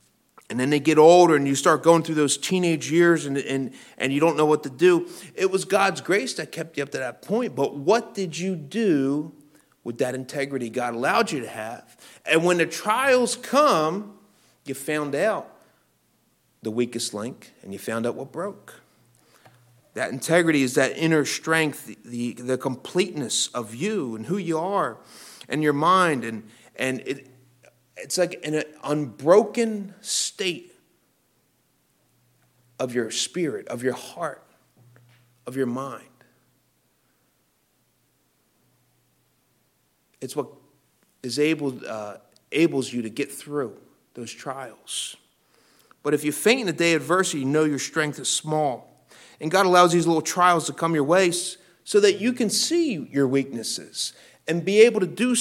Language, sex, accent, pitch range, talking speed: English, male, American, 130-180 Hz, 160 wpm